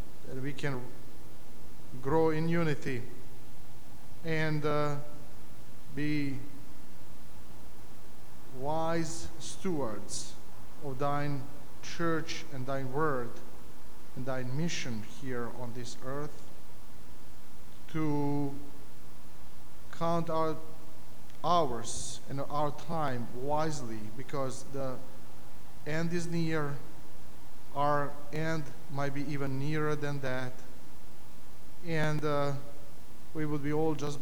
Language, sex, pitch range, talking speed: English, male, 110-150 Hz, 90 wpm